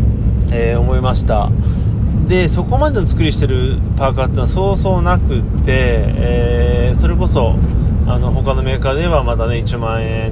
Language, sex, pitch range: Japanese, male, 95-115 Hz